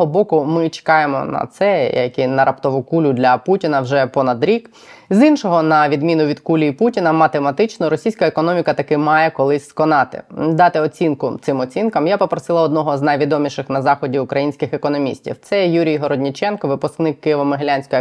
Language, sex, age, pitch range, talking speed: Ukrainian, female, 20-39, 140-165 Hz, 155 wpm